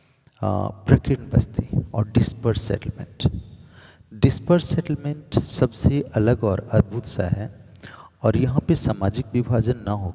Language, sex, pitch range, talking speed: Hindi, male, 100-130 Hz, 120 wpm